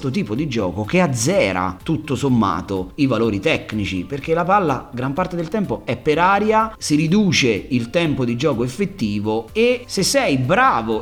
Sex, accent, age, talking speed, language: male, native, 30-49, 170 wpm, Italian